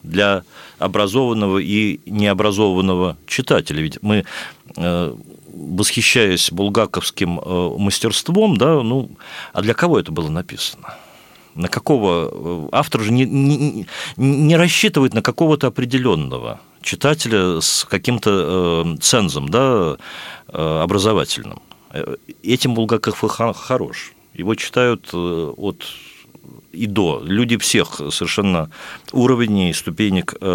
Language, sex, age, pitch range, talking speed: Russian, male, 50-69, 95-130 Hz, 85 wpm